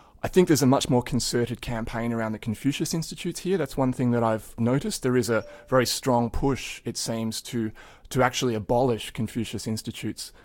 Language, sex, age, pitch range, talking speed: English, male, 20-39, 110-135 Hz, 190 wpm